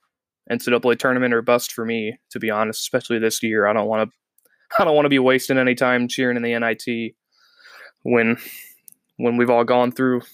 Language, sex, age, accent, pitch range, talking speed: English, male, 20-39, American, 115-140 Hz, 195 wpm